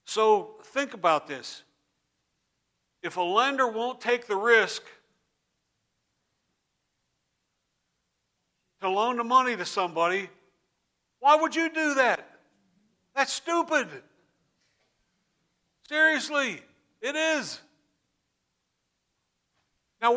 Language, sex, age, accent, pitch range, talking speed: English, male, 60-79, American, 165-235 Hz, 85 wpm